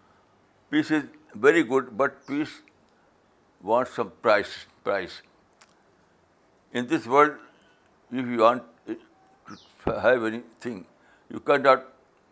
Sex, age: male, 60-79